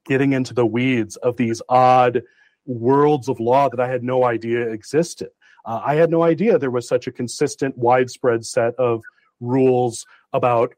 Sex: male